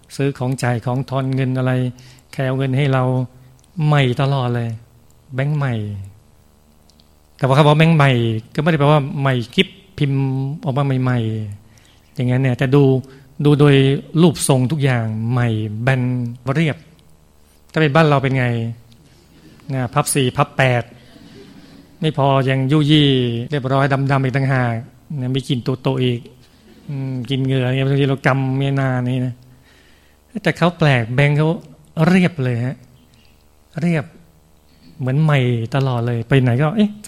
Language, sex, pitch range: Thai, male, 120-140 Hz